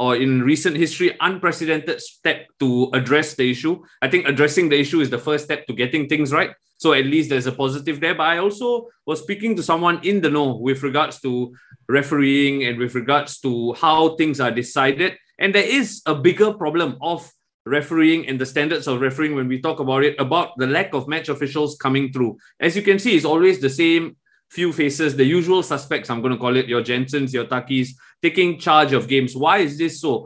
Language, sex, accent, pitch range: English, male, Malaysian, 135-170 Hz